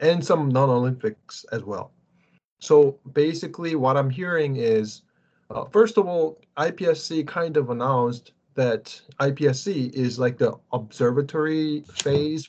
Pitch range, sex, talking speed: 120-145 Hz, male, 125 wpm